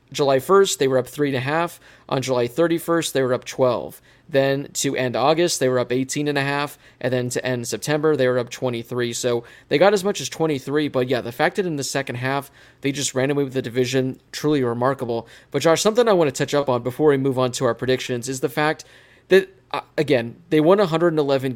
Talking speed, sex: 220 wpm, male